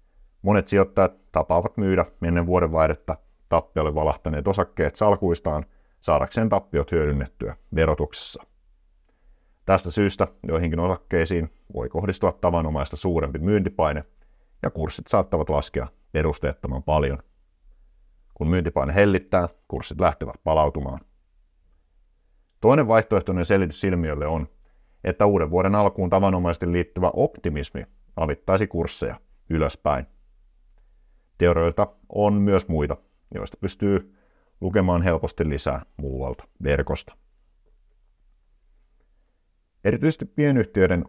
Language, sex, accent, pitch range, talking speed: Finnish, male, native, 75-95 Hz, 95 wpm